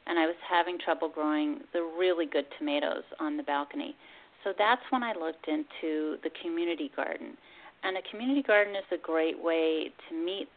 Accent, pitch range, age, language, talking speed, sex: American, 160-230 Hz, 40-59, English, 180 wpm, female